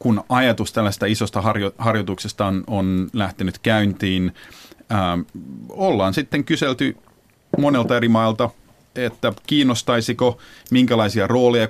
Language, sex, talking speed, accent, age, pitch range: Finnish, male, 110 wpm, native, 30-49, 100-115 Hz